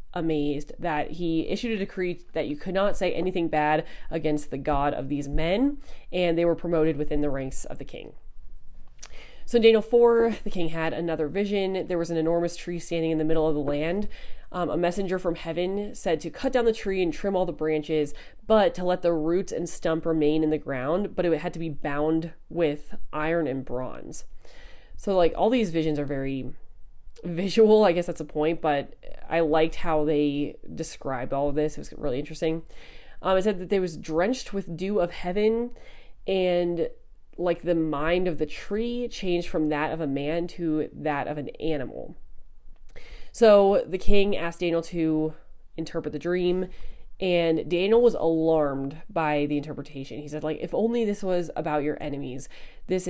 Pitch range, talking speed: 155-185 Hz, 190 wpm